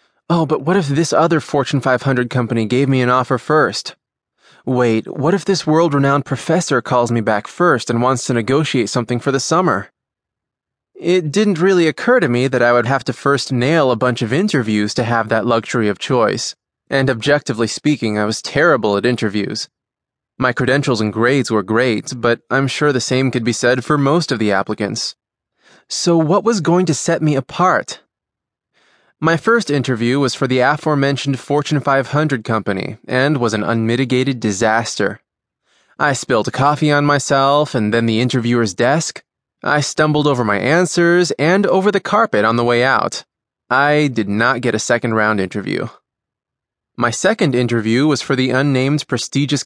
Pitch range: 120-150 Hz